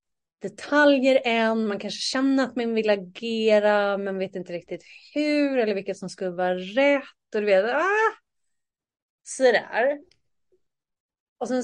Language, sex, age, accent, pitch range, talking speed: Swedish, female, 30-49, native, 185-240 Hz, 145 wpm